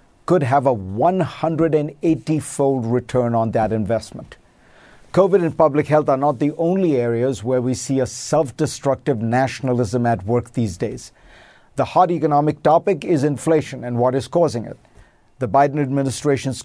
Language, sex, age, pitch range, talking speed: English, male, 50-69, 125-160 Hz, 150 wpm